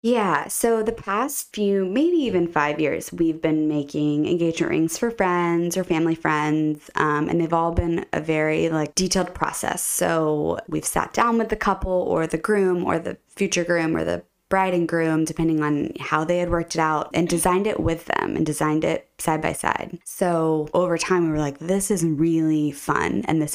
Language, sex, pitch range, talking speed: English, female, 155-180 Hz, 195 wpm